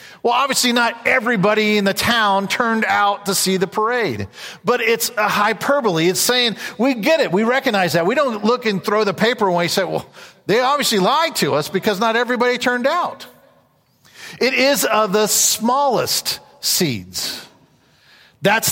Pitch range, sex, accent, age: 190-235 Hz, male, American, 40-59